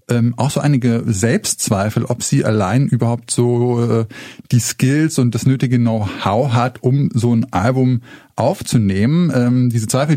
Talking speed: 155 wpm